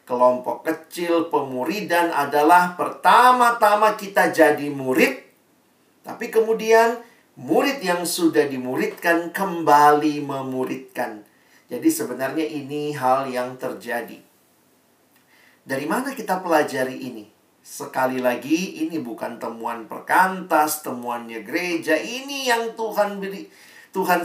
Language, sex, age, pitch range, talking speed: Indonesian, male, 50-69, 140-210 Hz, 95 wpm